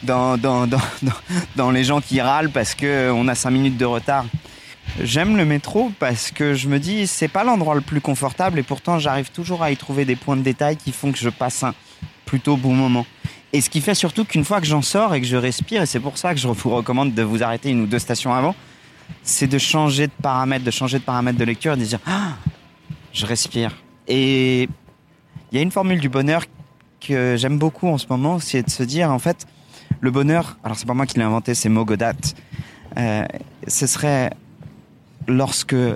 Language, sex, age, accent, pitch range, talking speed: French, male, 30-49, French, 120-150 Hz, 220 wpm